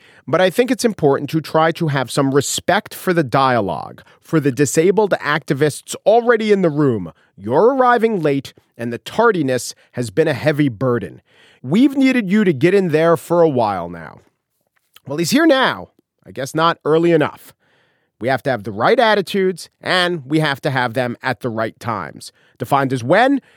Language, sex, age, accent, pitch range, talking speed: English, male, 40-59, American, 135-220 Hz, 185 wpm